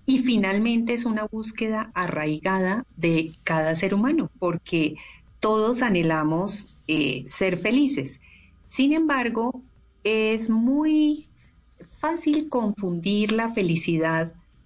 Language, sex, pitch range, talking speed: Spanish, female, 170-220 Hz, 100 wpm